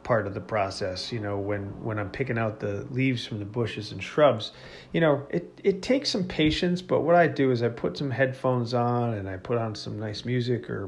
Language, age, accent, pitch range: English, 40-59, American, 110-140 Hz